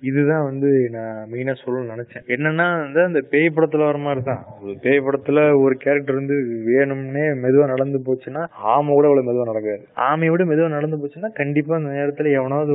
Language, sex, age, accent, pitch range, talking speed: Tamil, male, 20-39, native, 120-145 Hz, 160 wpm